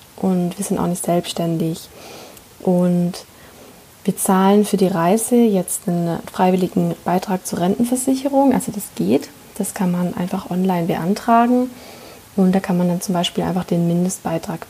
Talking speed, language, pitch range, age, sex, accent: 150 wpm, German, 175-210 Hz, 20-39, female, German